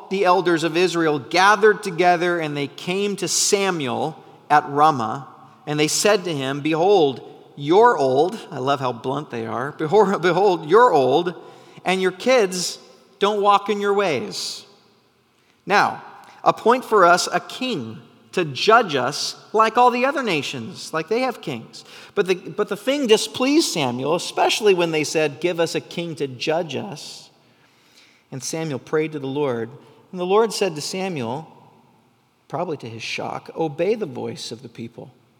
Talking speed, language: 165 wpm, English